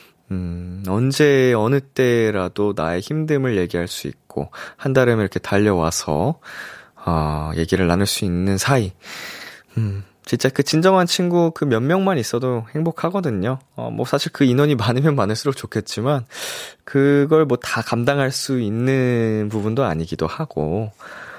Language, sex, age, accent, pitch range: Korean, male, 20-39, native, 100-145 Hz